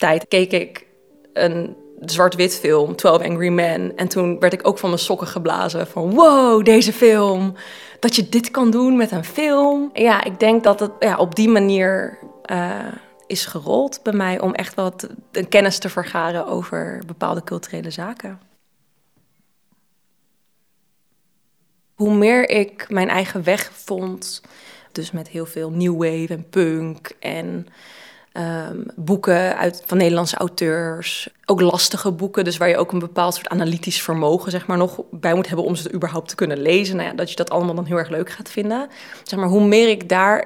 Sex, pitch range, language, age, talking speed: female, 175-205 Hz, Dutch, 20-39, 160 wpm